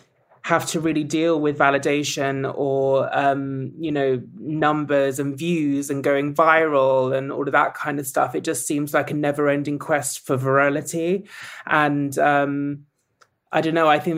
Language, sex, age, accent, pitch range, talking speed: English, male, 20-39, British, 140-160 Hz, 165 wpm